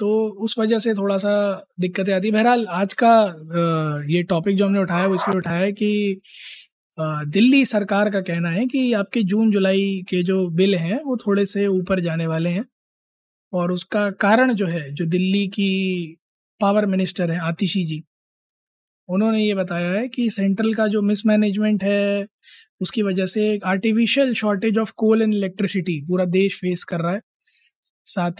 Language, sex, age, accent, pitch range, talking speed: Hindi, male, 20-39, native, 180-210 Hz, 170 wpm